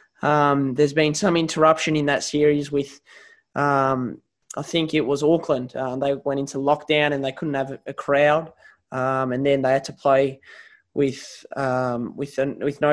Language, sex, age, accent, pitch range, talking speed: English, male, 20-39, Australian, 140-160 Hz, 185 wpm